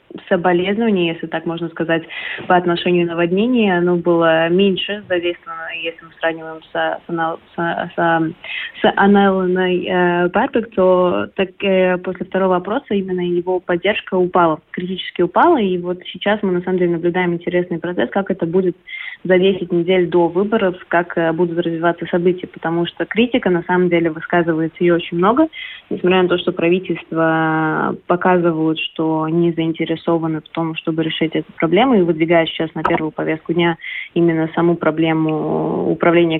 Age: 20-39